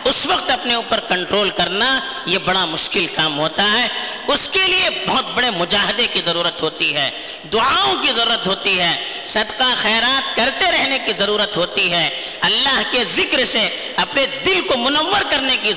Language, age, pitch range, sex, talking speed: Urdu, 50-69, 195-305 Hz, female, 170 wpm